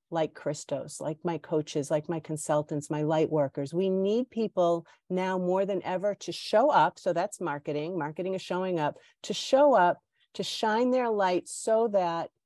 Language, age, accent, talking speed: English, 40-59, American, 180 wpm